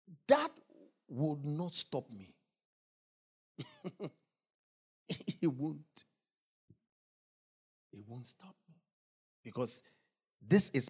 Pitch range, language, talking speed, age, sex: 150-215 Hz, English, 75 wpm, 50-69, male